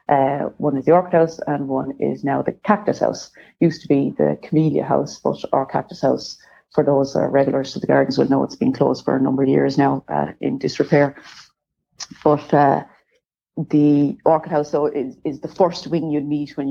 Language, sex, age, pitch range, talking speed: English, female, 30-49, 135-155 Hz, 210 wpm